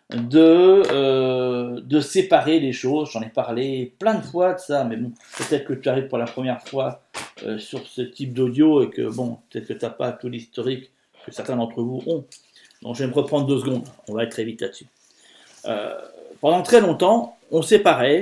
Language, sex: French, male